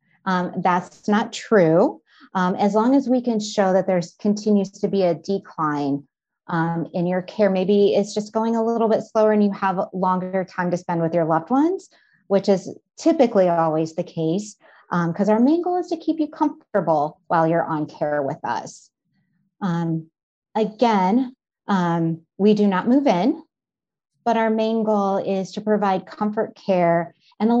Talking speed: 180 wpm